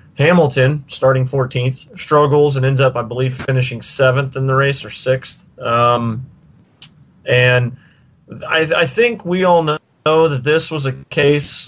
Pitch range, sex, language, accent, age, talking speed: 120-150 Hz, male, English, American, 30-49, 145 wpm